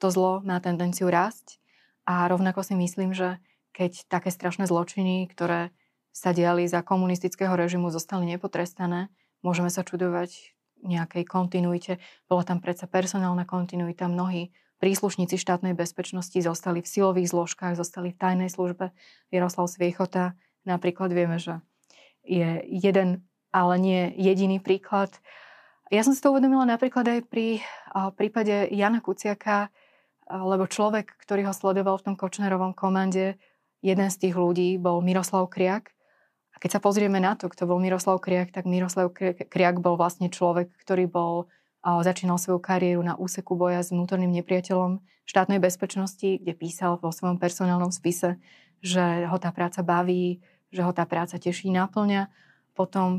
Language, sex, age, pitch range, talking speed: Slovak, female, 20-39, 175-190 Hz, 145 wpm